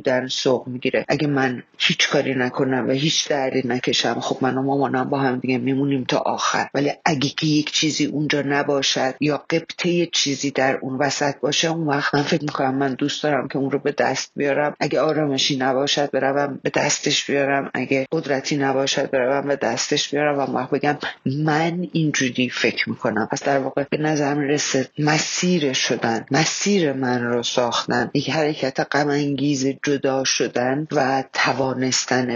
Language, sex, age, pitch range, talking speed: Persian, female, 30-49, 130-150 Hz, 165 wpm